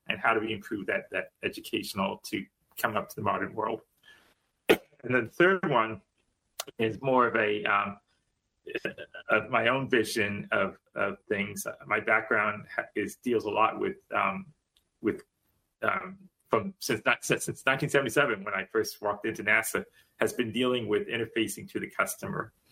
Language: English